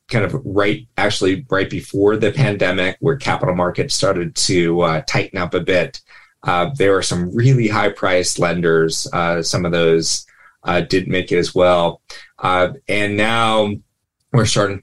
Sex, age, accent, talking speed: male, 30-49, American, 160 wpm